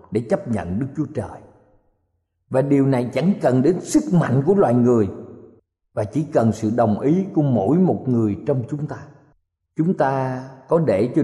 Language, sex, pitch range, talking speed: Vietnamese, male, 110-165 Hz, 185 wpm